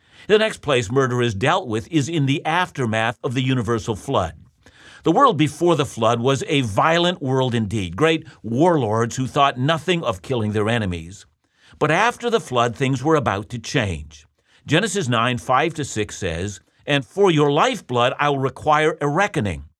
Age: 50-69